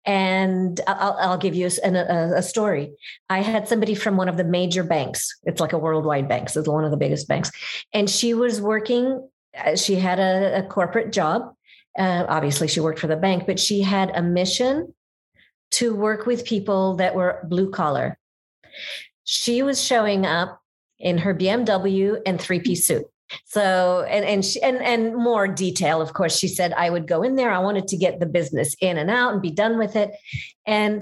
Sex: female